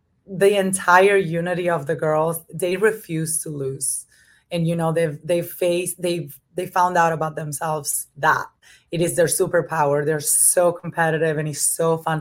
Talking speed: 165 wpm